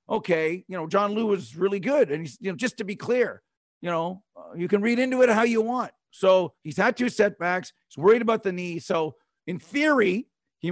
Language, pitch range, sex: English, 175-220 Hz, male